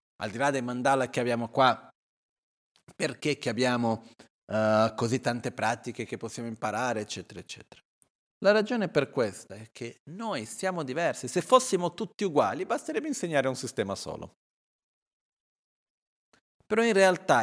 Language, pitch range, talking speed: Italian, 120-175 Hz, 140 wpm